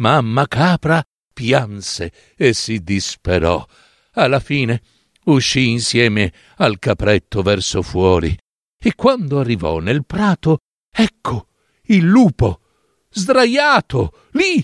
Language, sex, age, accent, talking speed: Italian, male, 60-79, native, 100 wpm